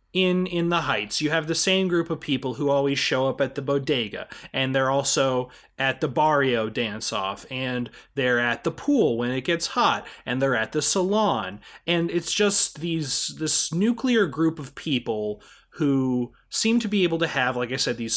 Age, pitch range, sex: 30-49, 130-175 Hz, male